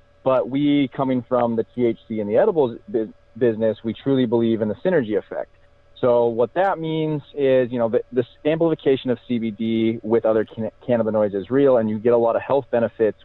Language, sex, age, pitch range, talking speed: English, male, 30-49, 110-125 Hz, 185 wpm